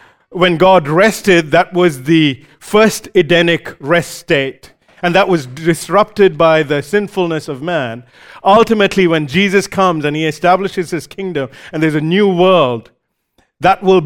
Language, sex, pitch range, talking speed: English, male, 155-205 Hz, 150 wpm